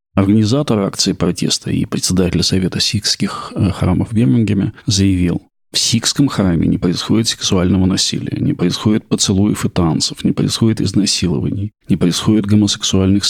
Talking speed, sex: 130 wpm, male